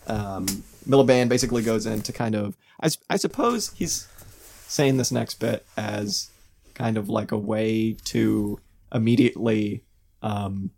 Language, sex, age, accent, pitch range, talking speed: English, male, 20-39, American, 100-115 Hz, 135 wpm